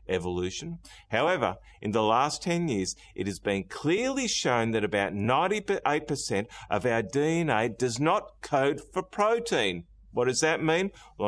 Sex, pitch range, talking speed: male, 115-185 Hz, 150 wpm